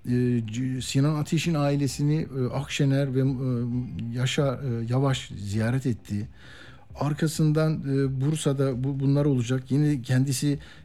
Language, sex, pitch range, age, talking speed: Turkish, male, 115-150 Hz, 50-69, 85 wpm